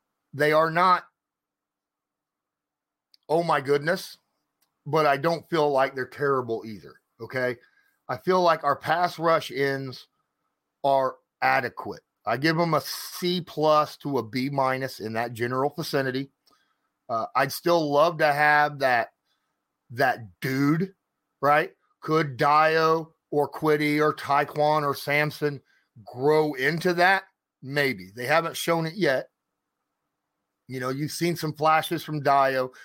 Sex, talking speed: male, 135 wpm